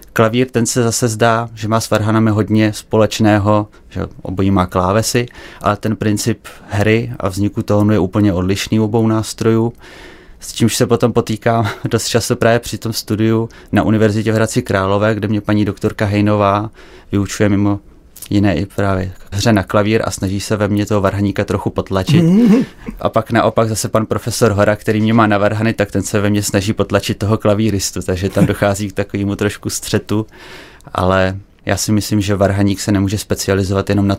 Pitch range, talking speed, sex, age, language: 100-110 Hz, 185 wpm, male, 30-49, Czech